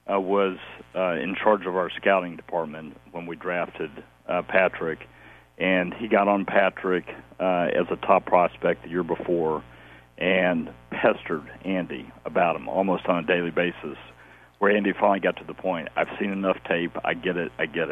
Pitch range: 75-95 Hz